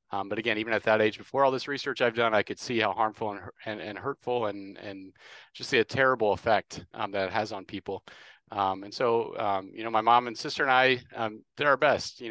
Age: 30-49